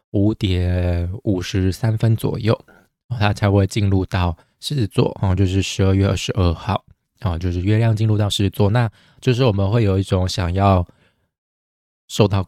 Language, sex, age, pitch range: Chinese, male, 20-39, 95-115 Hz